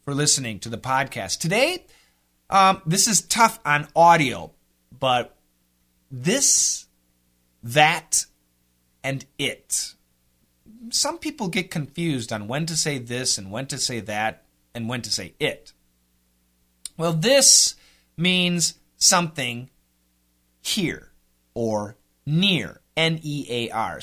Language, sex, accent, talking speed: English, male, American, 110 wpm